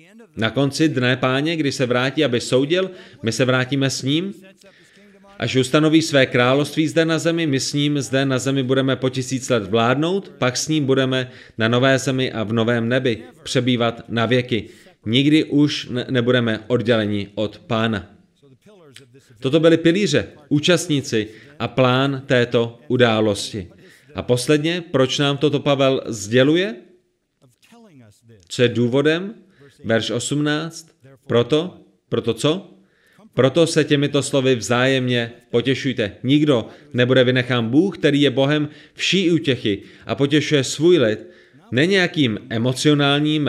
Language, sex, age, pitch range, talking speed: Czech, male, 30-49, 120-150 Hz, 135 wpm